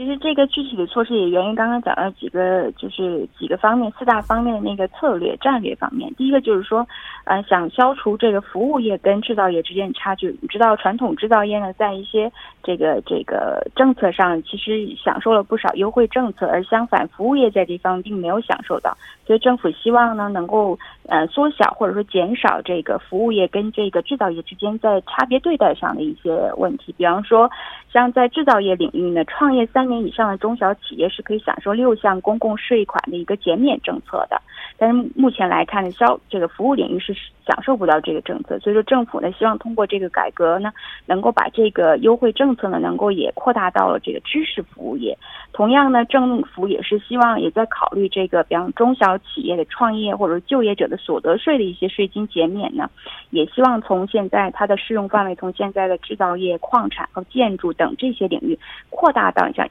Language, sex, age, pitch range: Korean, female, 20-39, 190-245 Hz